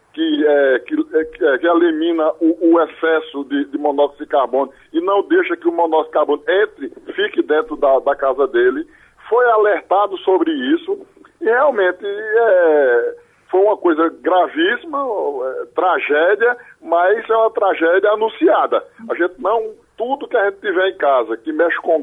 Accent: Brazilian